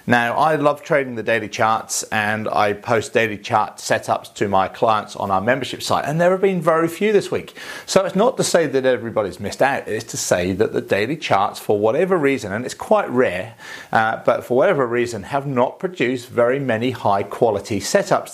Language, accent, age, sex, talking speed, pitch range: English, British, 40-59, male, 210 wpm, 105-140 Hz